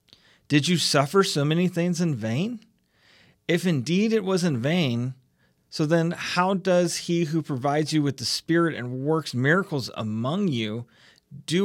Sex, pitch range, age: male, 120-165 Hz, 40-59